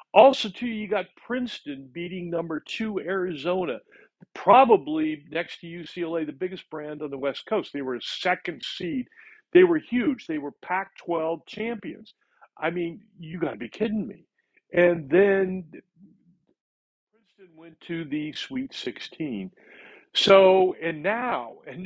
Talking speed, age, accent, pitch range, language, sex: 145 wpm, 60-79, American, 165-245 Hz, English, male